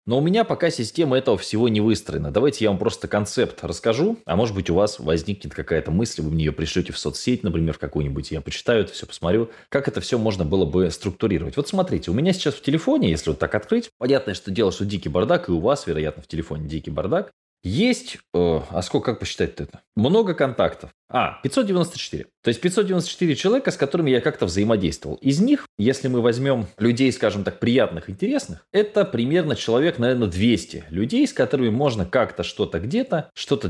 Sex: male